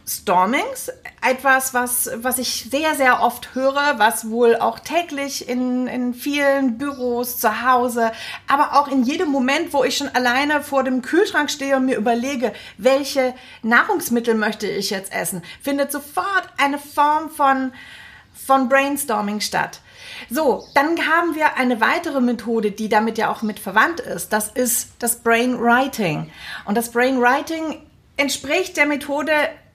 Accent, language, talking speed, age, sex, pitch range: German, German, 145 wpm, 30-49, female, 235-290 Hz